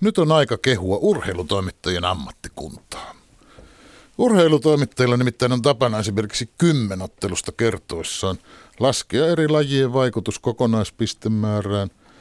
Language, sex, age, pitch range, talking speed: Finnish, male, 60-79, 95-130 Hz, 95 wpm